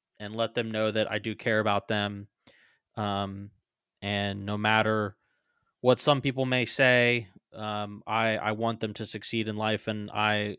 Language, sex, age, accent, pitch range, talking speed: English, male, 20-39, American, 105-120 Hz, 170 wpm